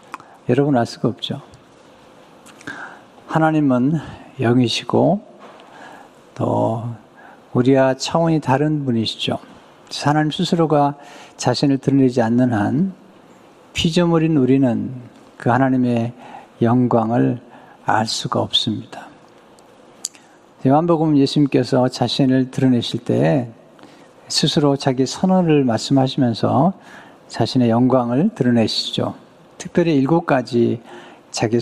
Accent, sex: native, male